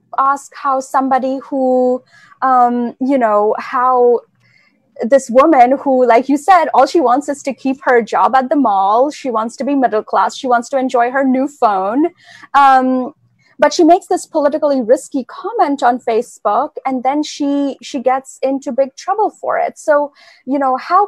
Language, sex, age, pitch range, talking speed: Hindi, female, 20-39, 245-295 Hz, 175 wpm